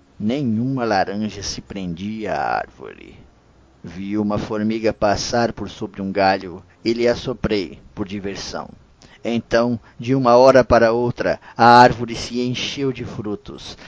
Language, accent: Portuguese, Brazilian